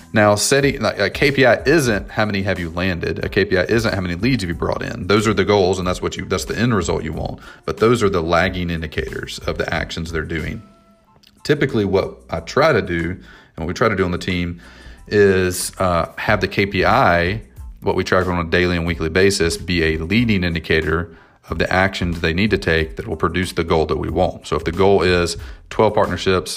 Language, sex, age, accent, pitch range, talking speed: English, male, 30-49, American, 85-100 Hz, 225 wpm